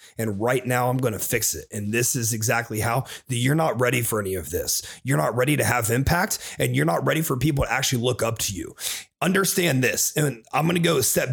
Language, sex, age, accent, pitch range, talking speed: English, male, 30-49, American, 125-180 Hz, 250 wpm